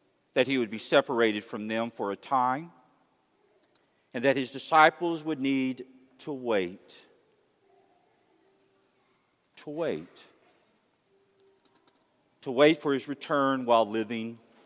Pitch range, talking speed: 130-205 Hz, 110 wpm